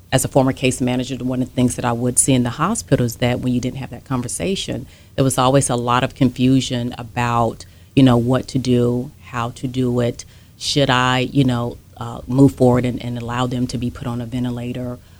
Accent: American